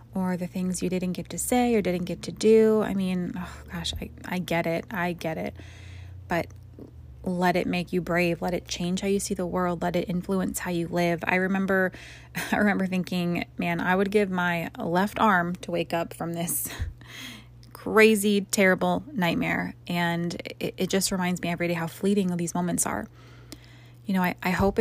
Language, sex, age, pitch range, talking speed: English, female, 20-39, 165-190 Hz, 200 wpm